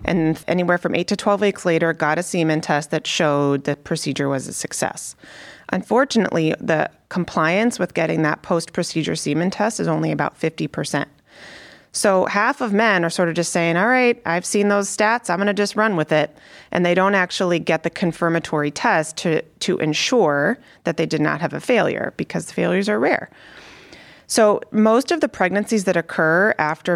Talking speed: 190 wpm